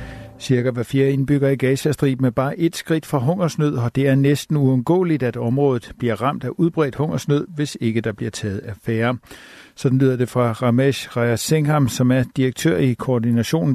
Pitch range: 120-145 Hz